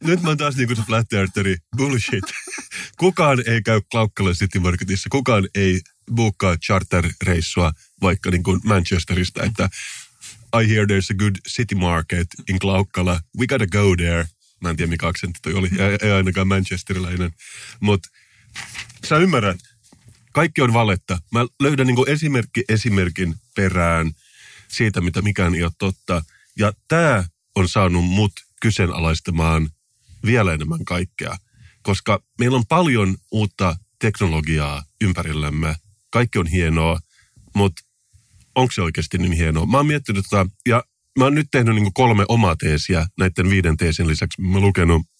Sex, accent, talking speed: male, native, 145 wpm